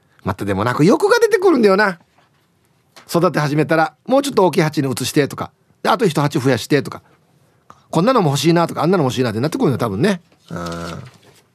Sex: male